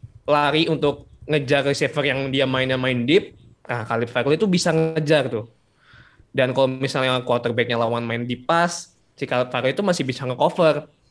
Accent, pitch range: native, 120-150 Hz